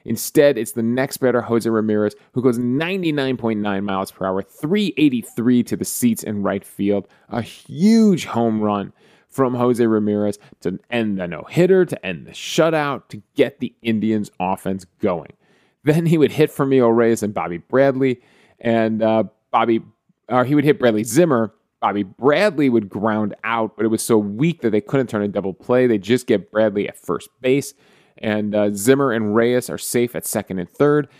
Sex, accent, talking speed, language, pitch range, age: male, American, 185 wpm, English, 105-145 Hz, 30-49